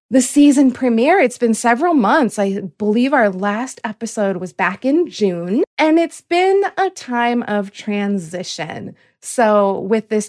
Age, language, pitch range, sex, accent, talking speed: 30-49, English, 195-265 Hz, female, American, 150 wpm